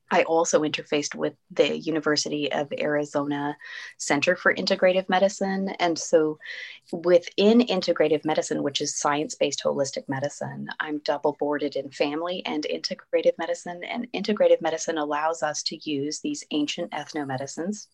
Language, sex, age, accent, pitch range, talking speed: English, female, 30-49, American, 145-175 Hz, 130 wpm